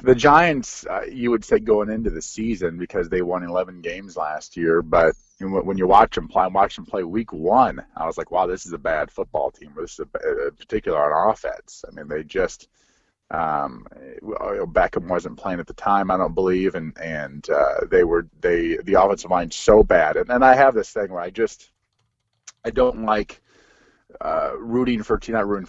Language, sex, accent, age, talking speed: English, male, American, 30-49, 210 wpm